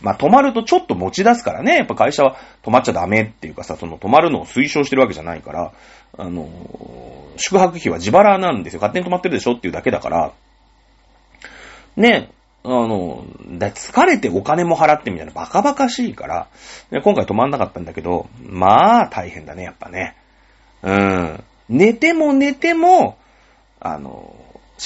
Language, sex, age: Japanese, male, 30-49